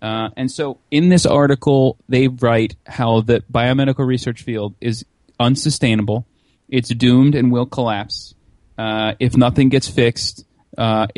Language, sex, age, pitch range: English, male, 30-49, 110-130 Hz